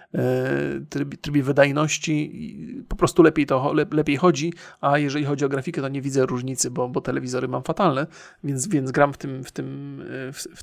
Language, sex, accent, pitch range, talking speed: Polish, male, native, 140-165 Hz, 180 wpm